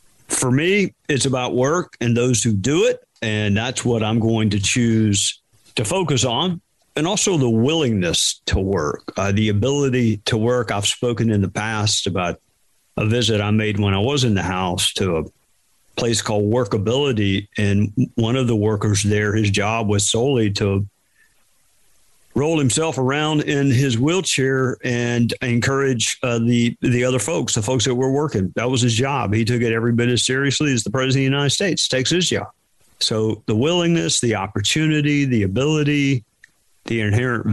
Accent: American